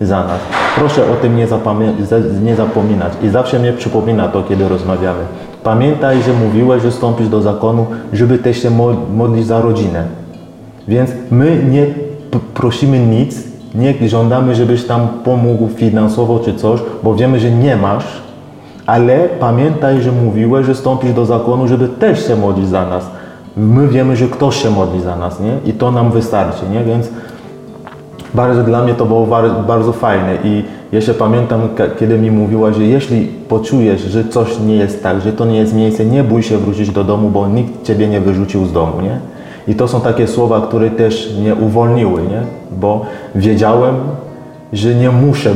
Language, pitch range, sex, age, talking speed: Polish, 105-120 Hz, male, 30-49, 175 wpm